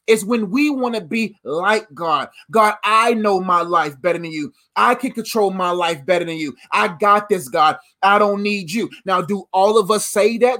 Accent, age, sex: American, 30-49, male